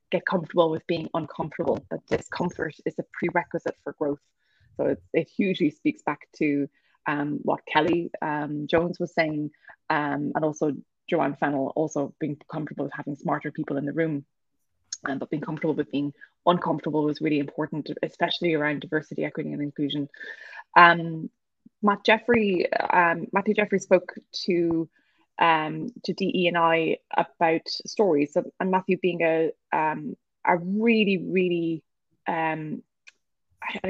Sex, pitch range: female, 155-185 Hz